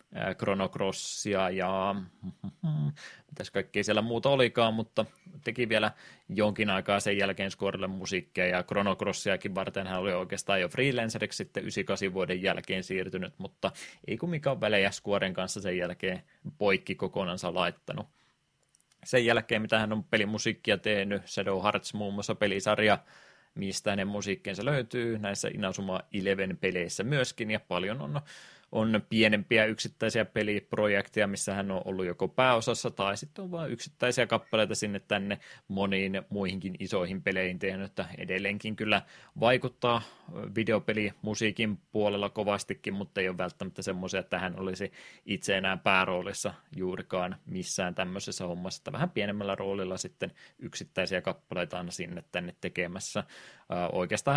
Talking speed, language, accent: 130 wpm, Finnish, native